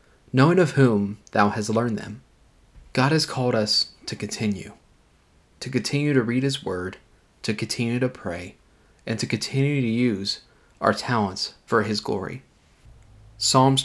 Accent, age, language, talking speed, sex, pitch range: American, 20-39, English, 145 wpm, male, 105-130 Hz